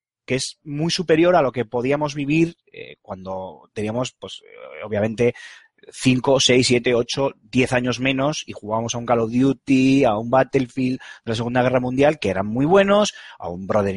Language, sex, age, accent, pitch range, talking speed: Spanish, male, 30-49, Spanish, 110-140 Hz, 185 wpm